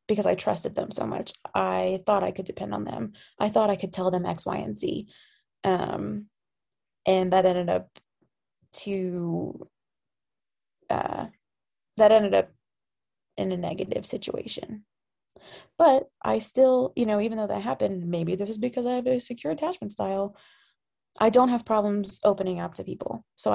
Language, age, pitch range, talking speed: English, 20-39, 185-220 Hz, 165 wpm